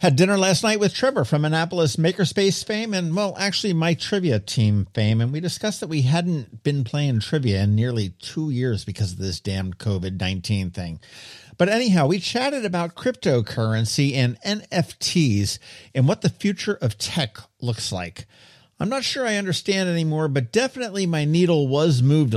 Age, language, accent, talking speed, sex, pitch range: 50-69, English, American, 170 wpm, male, 115-185 Hz